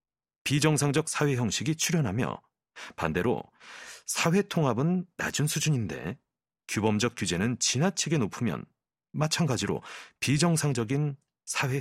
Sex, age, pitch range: male, 40-59, 105-155 Hz